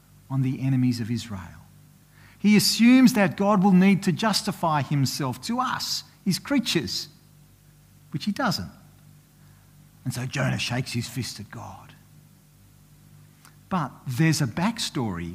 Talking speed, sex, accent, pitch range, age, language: 130 wpm, male, Australian, 130-195 Hz, 50-69, English